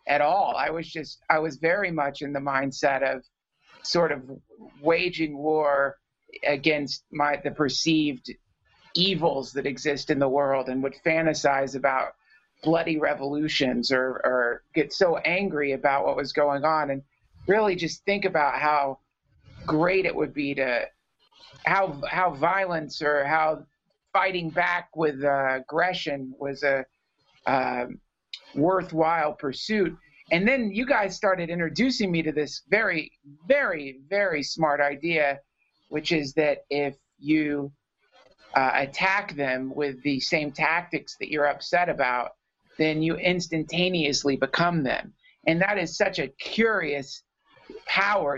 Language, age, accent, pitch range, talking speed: English, 50-69, American, 140-170 Hz, 135 wpm